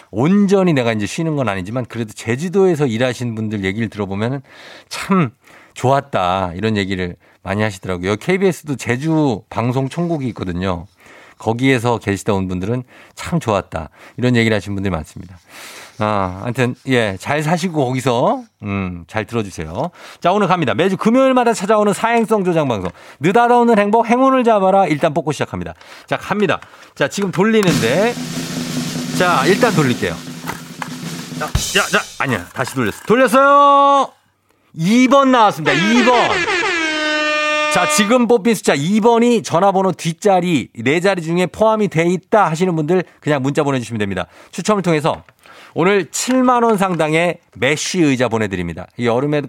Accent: native